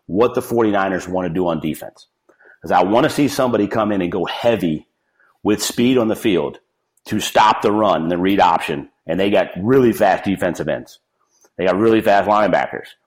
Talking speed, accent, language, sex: 195 wpm, American, English, male